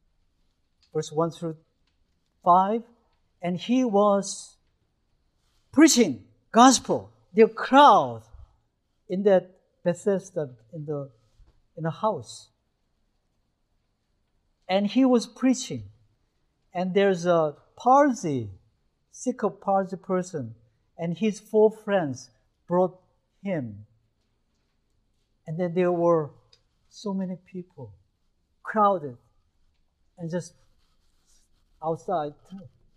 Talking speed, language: 85 wpm, English